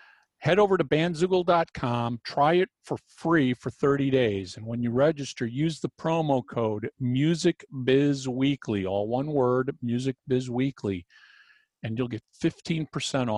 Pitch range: 120-155 Hz